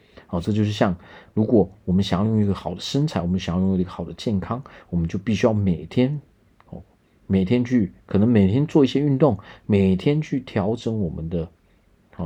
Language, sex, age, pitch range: Chinese, male, 40-59, 90-115 Hz